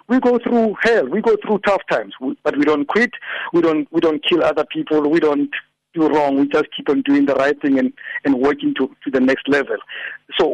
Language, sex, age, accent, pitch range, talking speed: English, male, 60-79, South African, 145-225 Hz, 235 wpm